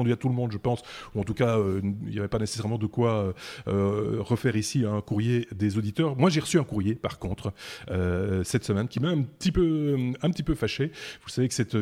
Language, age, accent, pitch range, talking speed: French, 30-49, French, 105-135 Hz, 245 wpm